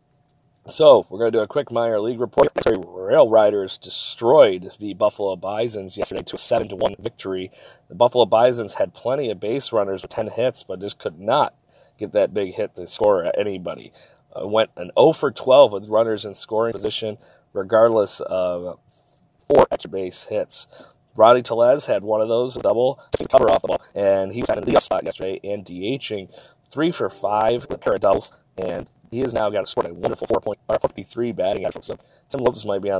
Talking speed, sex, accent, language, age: 205 wpm, male, American, English, 30-49